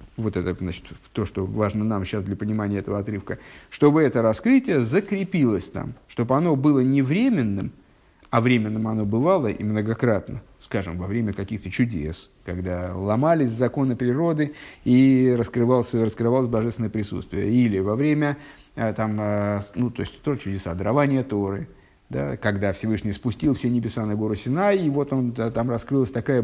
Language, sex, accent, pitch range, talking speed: Russian, male, native, 105-150 Hz, 155 wpm